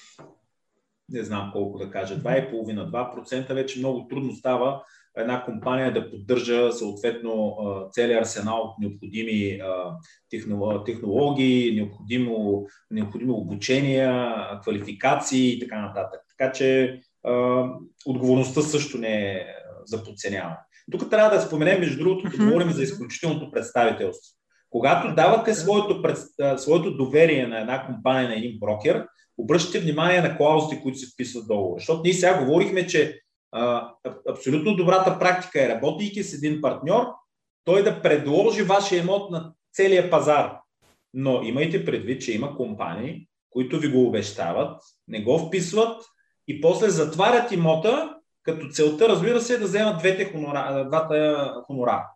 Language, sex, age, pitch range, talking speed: Bulgarian, male, 30-49, 120-180 Hz, 130 wpm